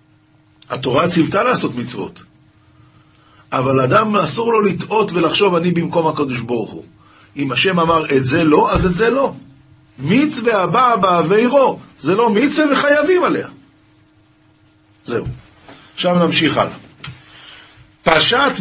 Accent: native